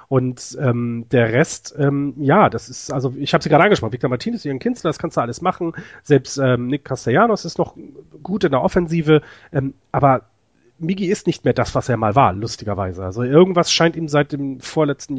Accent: German